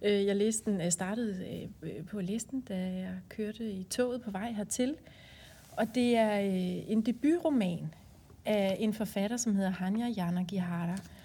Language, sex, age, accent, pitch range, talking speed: Danish, female, 30-49, native, 180-220 Hz, 145 wpm